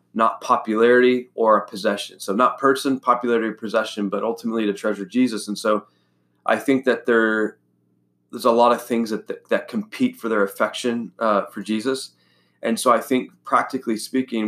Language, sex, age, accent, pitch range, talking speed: English, male, 20-39, American, 100-115 Hz, 175 wpm